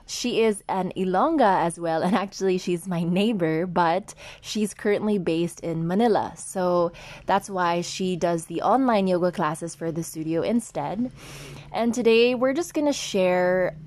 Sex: female